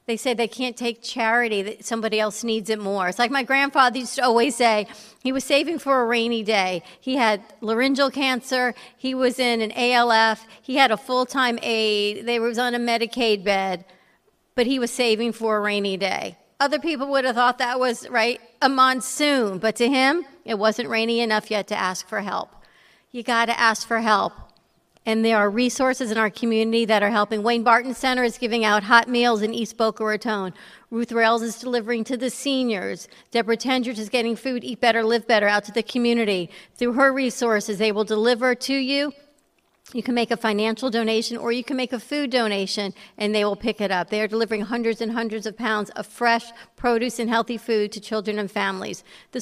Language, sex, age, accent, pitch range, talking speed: English, female, 50-69, American, 215-250 Hz, 210 wpm